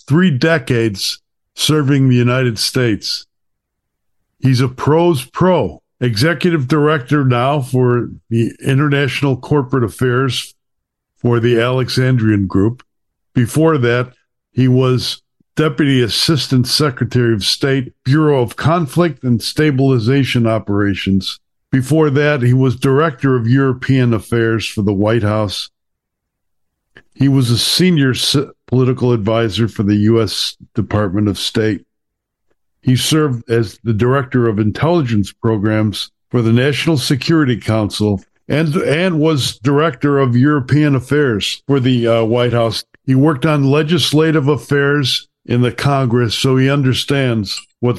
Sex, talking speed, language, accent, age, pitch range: male, 125 wpm, English, American, 60-79, 115-140 Hz